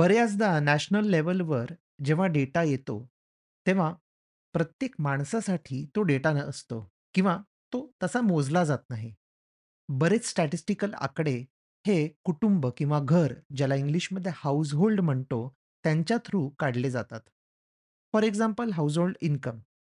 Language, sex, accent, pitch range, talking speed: Marathi, male, native, 130-180 Hz, 105 wpm